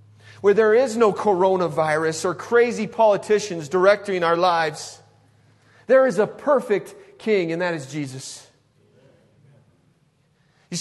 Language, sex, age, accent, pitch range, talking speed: English, male, 40-59, American, 150-215 Hz, 115 wpm